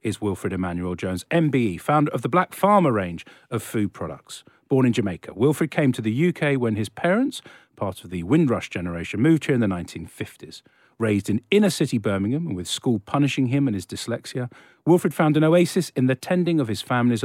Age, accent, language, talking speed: 40-59, British, English, 195 wpm